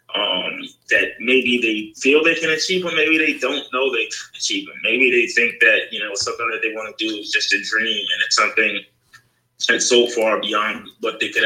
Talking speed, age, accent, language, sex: 225 wpm, 20-39, American, English, male